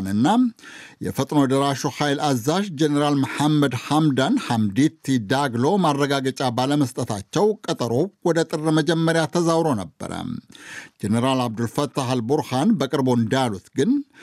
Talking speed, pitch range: 105 wpm, 135-175 Hz